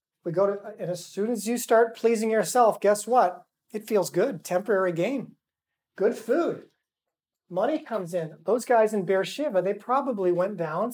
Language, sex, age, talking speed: English, male, 40-59, 170 wpm